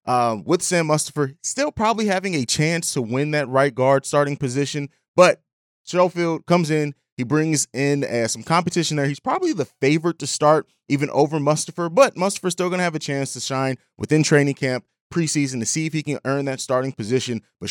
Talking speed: 205 wpm